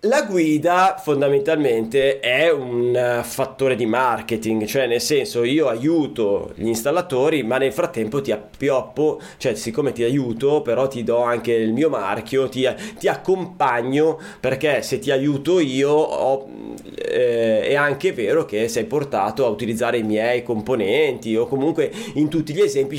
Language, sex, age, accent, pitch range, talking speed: Italian, male, 30-49, native, 130-200 Hz, 150 wpm